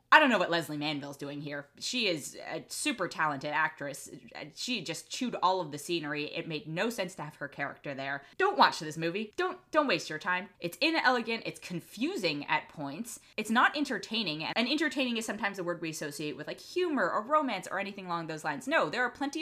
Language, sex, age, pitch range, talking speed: English, female, 20-39, 155-215 Hz, 215 wpm